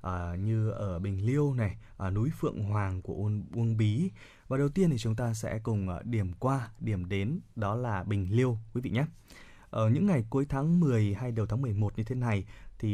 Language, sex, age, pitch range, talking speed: Vietnamese, male, 20-39, 105-130 Hz, 225 wpm